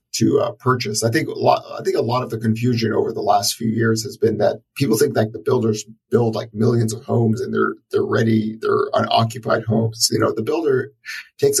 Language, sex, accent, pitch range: English, male, American, 115-130 Hz